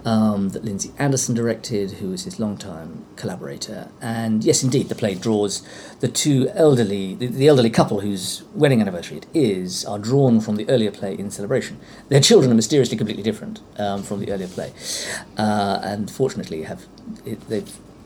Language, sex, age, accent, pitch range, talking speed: English, male, 40-59, British, 105-140 Hz, 175 wpm